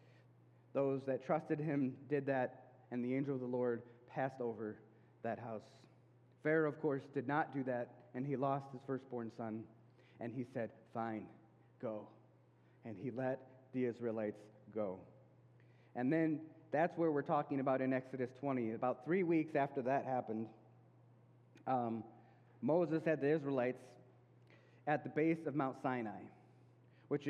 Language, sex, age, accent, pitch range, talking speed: English, male, 30-49, American, 120-150 Hz, 150 wpm